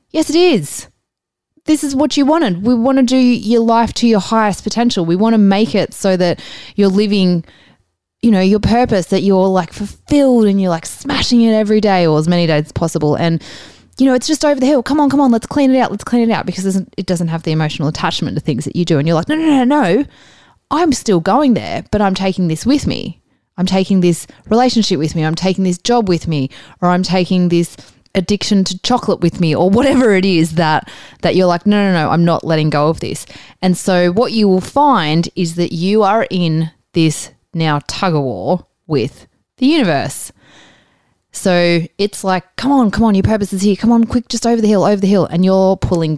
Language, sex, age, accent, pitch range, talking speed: English, female, 20-39, Australian, 170-225 Hz, 235 wpm